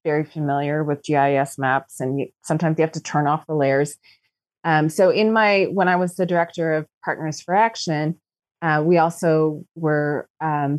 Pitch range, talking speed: 145-175 Hz, 185 wpm